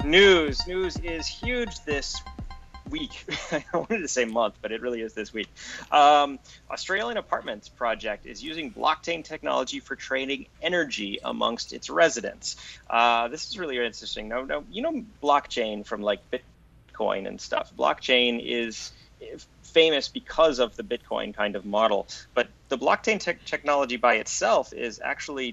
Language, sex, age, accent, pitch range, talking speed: English, male, 30-49, American, 110-145 Hz, 150 wpm